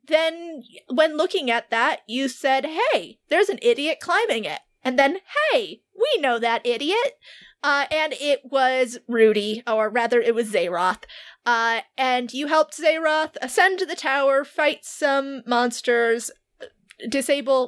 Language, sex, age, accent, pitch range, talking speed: English, female, 30-49, American, 230-295 Hz, 145 wpm